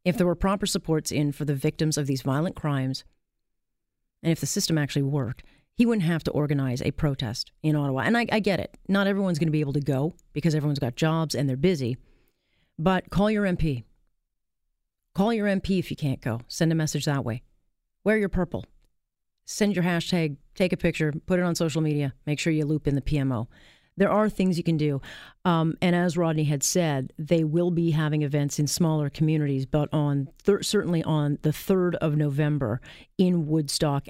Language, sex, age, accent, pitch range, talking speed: English, female, 40-59, American, 145-175 Hz, 205 wpm